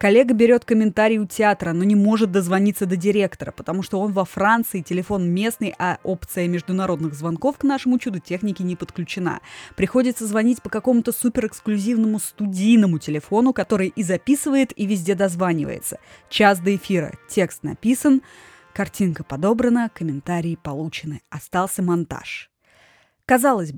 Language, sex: Russian, female